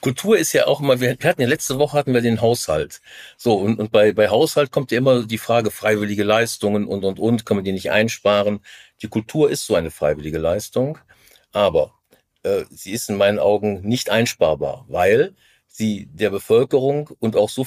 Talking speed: 195 wpm